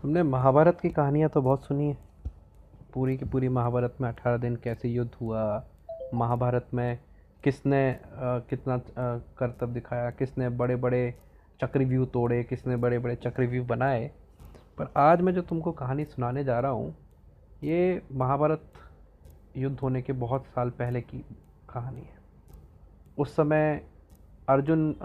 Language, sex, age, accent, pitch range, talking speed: Hindi, male, 30-49, native, 110-135 Hz, 140 wpm